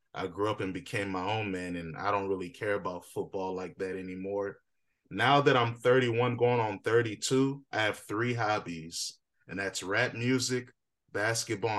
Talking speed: 175 wpm